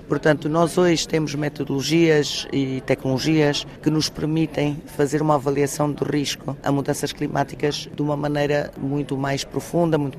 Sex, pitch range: female, 140-170 Hz